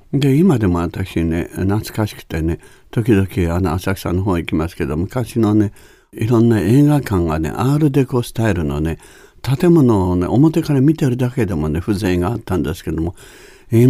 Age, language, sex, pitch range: 60-79, Japanese, male, 90-125 Hz